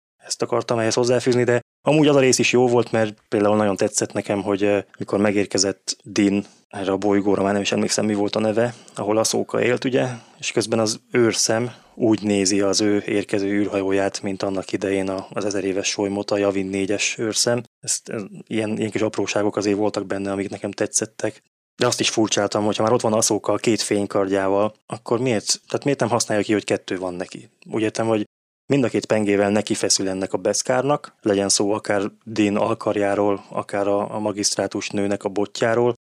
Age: 20-39